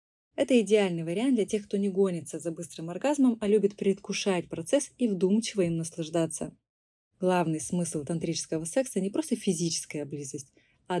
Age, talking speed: 20-39, 155 wpm